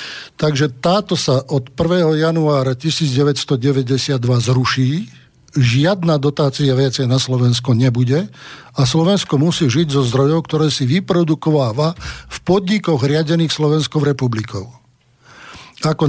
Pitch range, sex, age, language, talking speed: 135-160 Hz, male, 50-69, Slovak, 110 wpm